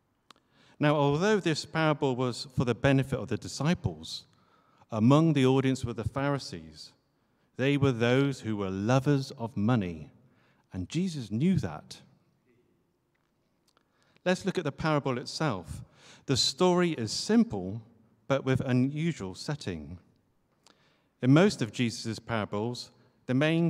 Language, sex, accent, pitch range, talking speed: English, male, British, 110-145 Hz, 125 wpm